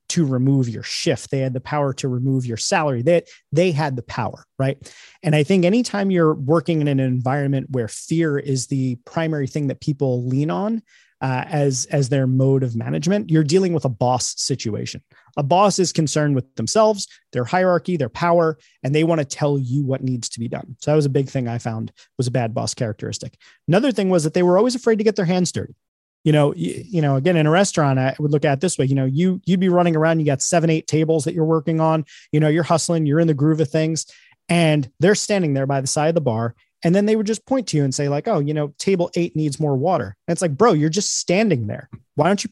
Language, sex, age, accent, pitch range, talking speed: English, male, 30-49, American, 135-175 Hz, 255 wpm